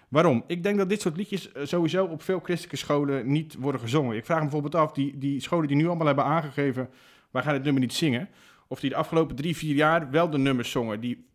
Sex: male